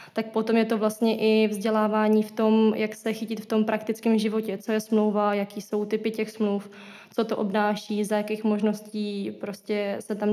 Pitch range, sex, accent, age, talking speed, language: 210-220 Hz, female, native, 20-39, 190 wpm, Czech